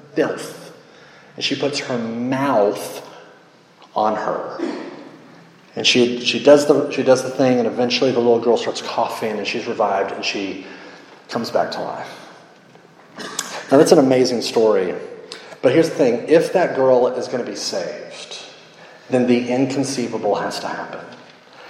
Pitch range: 125-150 Hz